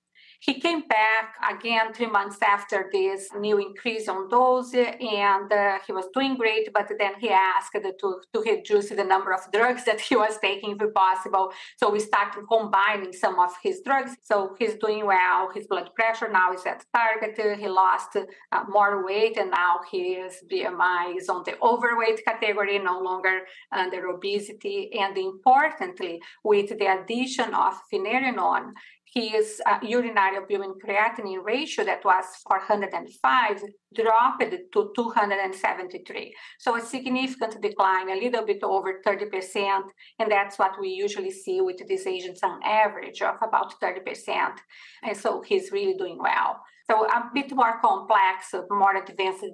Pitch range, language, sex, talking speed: 195-255 Hz, English, female, 155 wpm